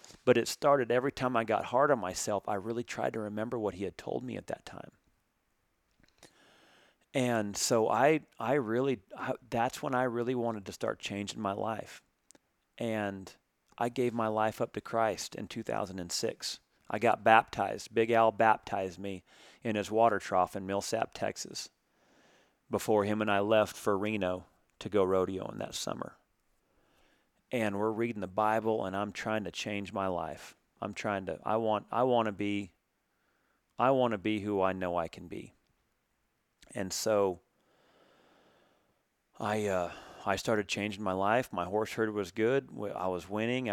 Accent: American